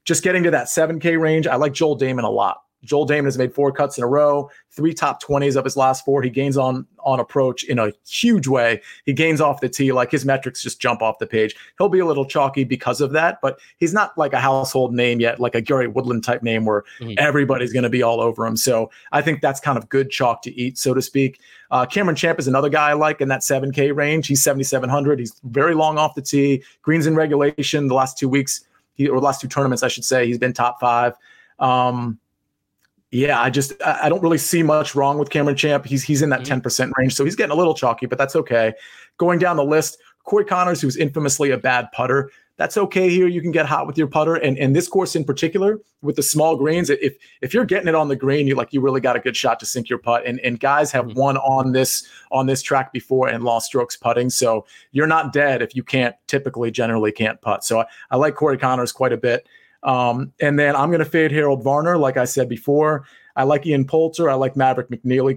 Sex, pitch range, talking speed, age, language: male, 125-150 Hz, 245 wpm, 30-49, English